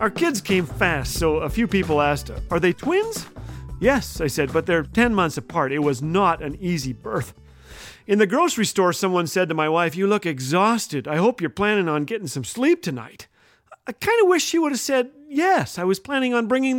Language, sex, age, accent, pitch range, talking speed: English, male, 40-59, American, 165-245 Hz, 220 wpm